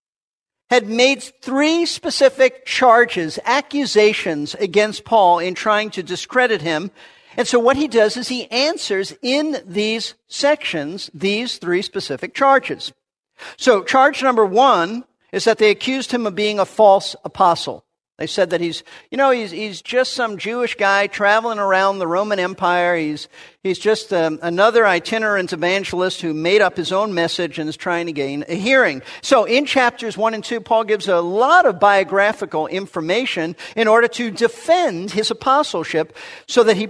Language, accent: English, American